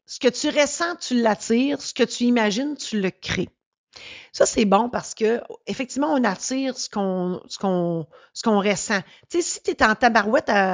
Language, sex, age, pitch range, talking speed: French, female, 40-59, 200-270 Hz, 200 wpm